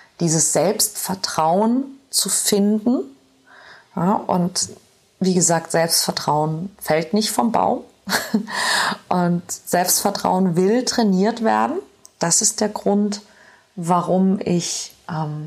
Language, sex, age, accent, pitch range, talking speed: German, female, 30-49, German, 165-205 Hz, 95 wpm